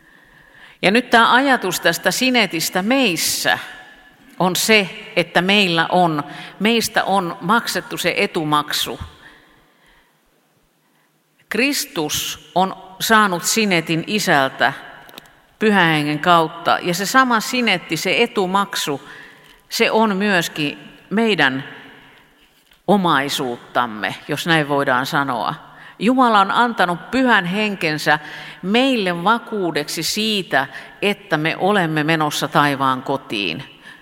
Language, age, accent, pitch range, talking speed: Finnish, 50-69, native, 155-215 Hz, 95 wpm